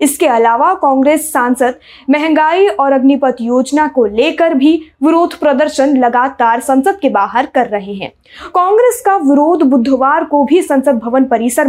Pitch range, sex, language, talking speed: 265-345 Hz, female, Hindi, 150 wpm